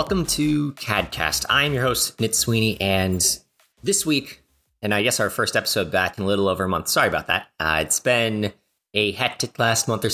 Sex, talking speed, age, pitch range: male, 205 wpm, 30-49, 105-130 Hz